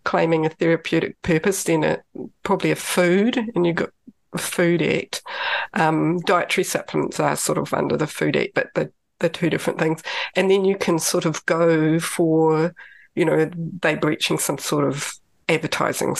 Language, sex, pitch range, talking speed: English, female, 160-185 Hz, 175 wpm